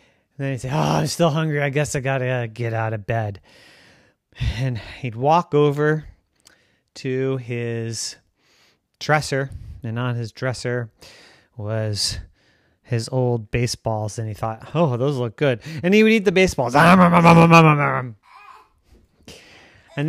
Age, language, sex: 30-49, English, male